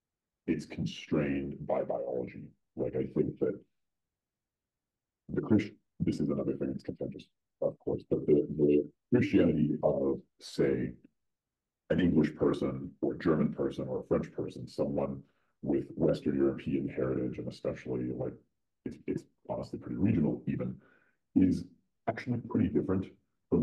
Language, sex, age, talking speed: English, female, 40-59, 135 wpm